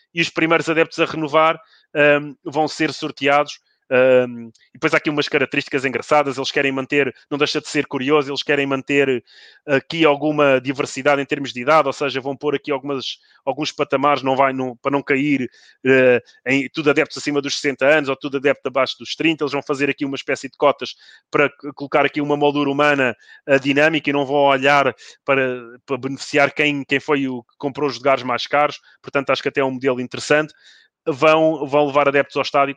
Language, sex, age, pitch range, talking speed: Portuguese, male, 20-39, 130-145 Hz, 200 wpm